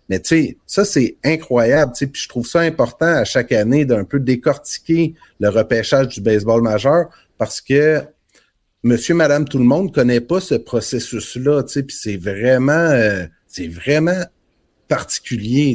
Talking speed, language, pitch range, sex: 170 wpm, French, 115-140 Hz, male